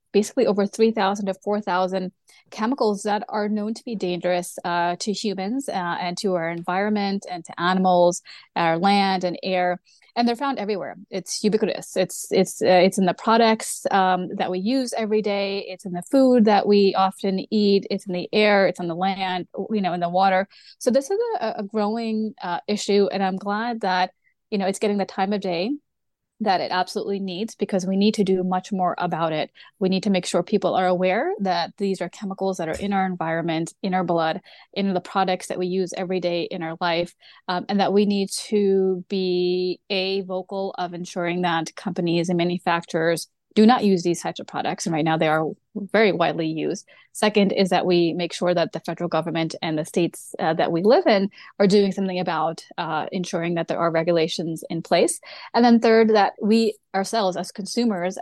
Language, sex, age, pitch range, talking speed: English, female, 30-49, 175-205 Hz, 205 wpm